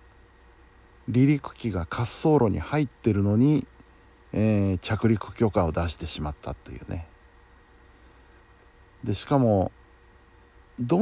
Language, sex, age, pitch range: Japanese, male, 50-69, 90-130 Hz